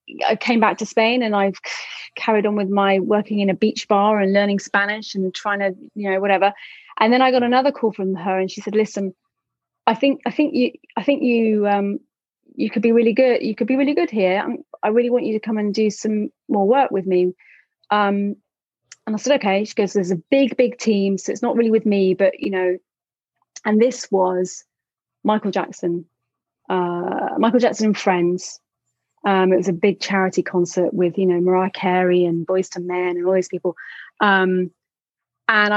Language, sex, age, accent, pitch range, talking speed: English, female, 30-49, British, 185-220 Hz, 205 wpm